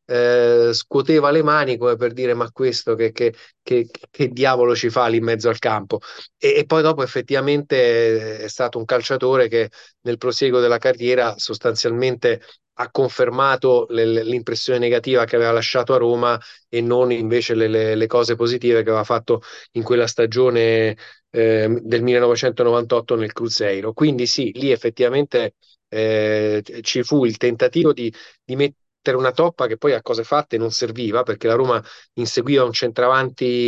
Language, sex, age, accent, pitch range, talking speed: Italian, male, 30-49, native, 115-130 Hz, 160 wpm